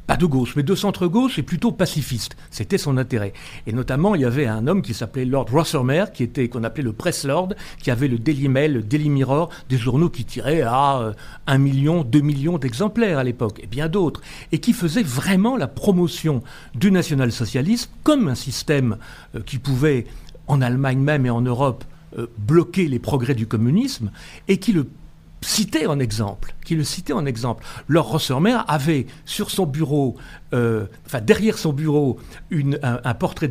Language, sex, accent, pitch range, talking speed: French, male, French, 125-170 Hz, 185 wpm